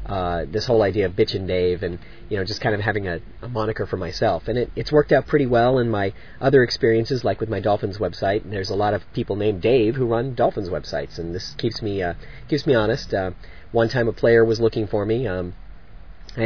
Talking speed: 250 wpm